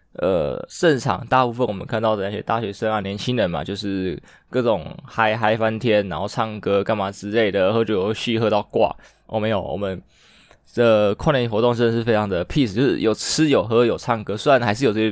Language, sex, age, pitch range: Chinese, male, 20-39, 100-125 Hz